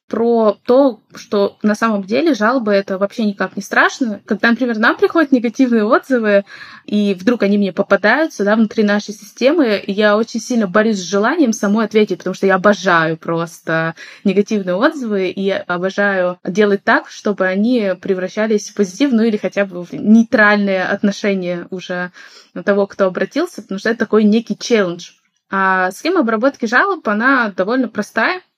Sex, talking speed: female, 160 wpm